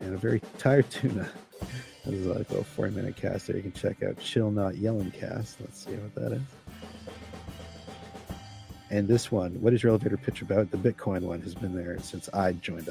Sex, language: male, English